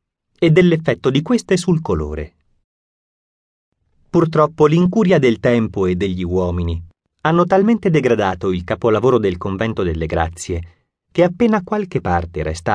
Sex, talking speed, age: male, 125 wpm, 30-49